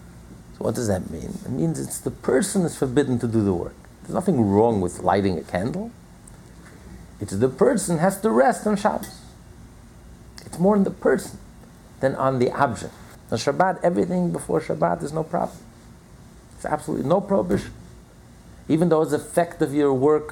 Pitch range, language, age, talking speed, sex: 115-175 Hz, English, 50-69, 175 wpm, male